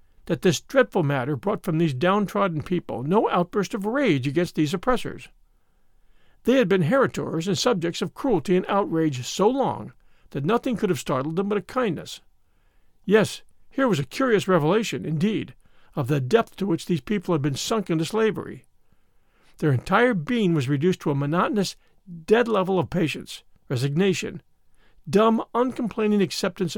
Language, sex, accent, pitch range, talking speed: English, male, American, 160-215 Hz, 160 wpm